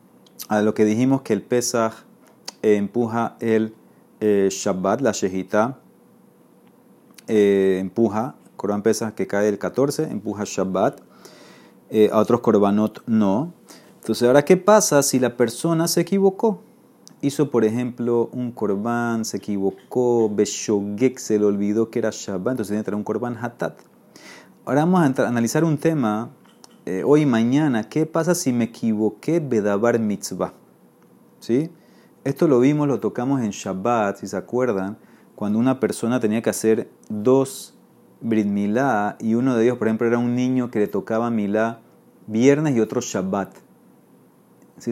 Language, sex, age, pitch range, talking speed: Spanish, male, 30-49, 105-125 Hz, 150 wpm